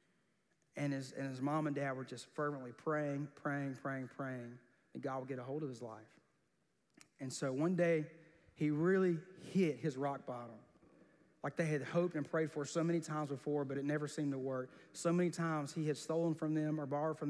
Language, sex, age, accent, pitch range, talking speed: English, male, 30-49, American, 135-155 Hz, 210 wpm